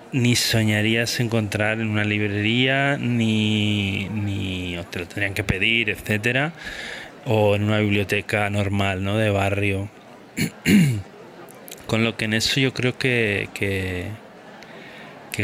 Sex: male